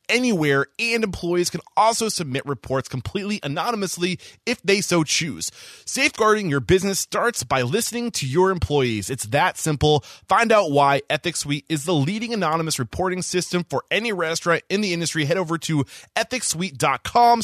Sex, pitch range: male, 125-175 Hz